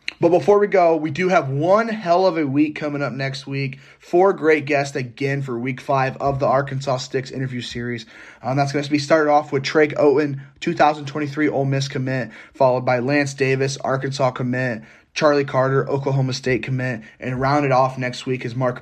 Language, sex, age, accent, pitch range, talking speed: English, male, 10-29, American, 130-155 Hz, 195 wpm